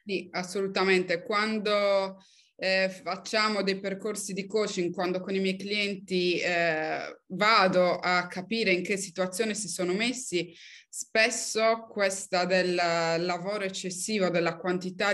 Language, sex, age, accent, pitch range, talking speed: Italian, female, 20-39, native, 175-210 Hz, 125 wpm